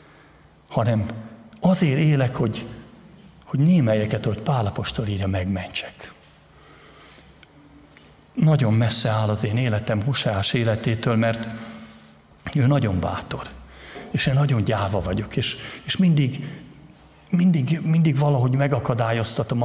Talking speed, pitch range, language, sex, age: 100 wpm, 110-145 Hz, Hungarian, male, 50-69